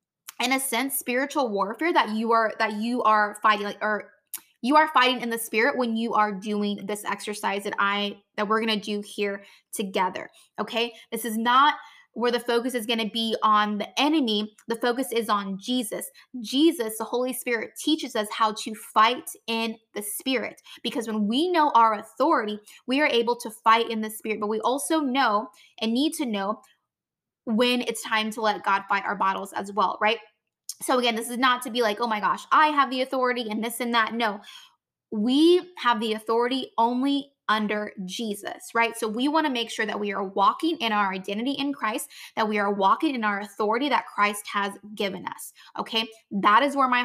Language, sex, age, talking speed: English, female, 20-39, 200 wpm